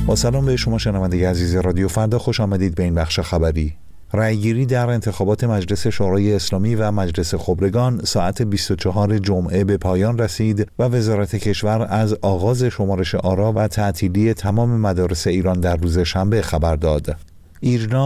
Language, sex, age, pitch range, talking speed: Persian, male, 50-69, 95-115 Hz, 155 wpm